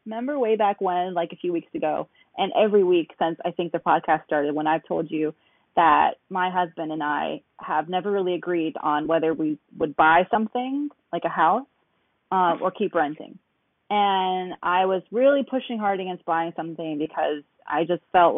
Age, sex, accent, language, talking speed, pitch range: 30-49, female, American, English, 185 wpm, 165-205 Hz